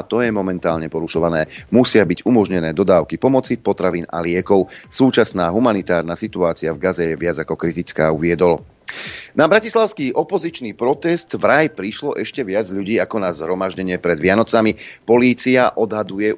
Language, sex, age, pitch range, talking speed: Slovak, male, 40-59, 85-115 Hz, 145 wpm